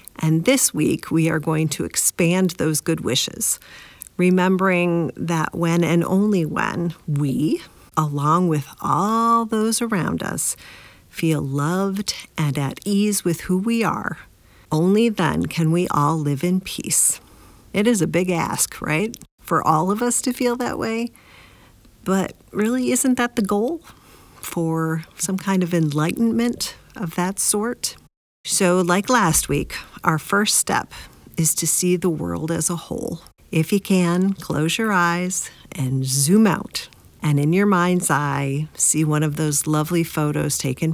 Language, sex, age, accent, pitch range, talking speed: English, female, 50-69, American, 155-190 Hz, 155 wpm